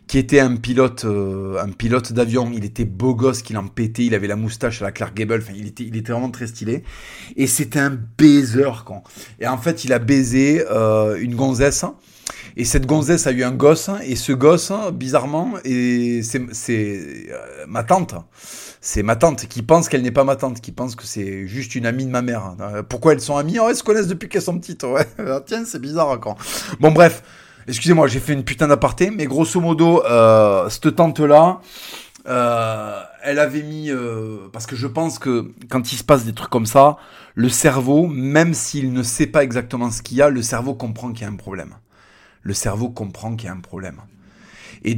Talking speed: 215 wpm